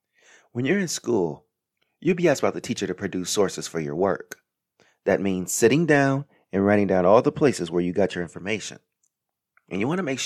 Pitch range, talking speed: 90-125 Hz, 210 wpm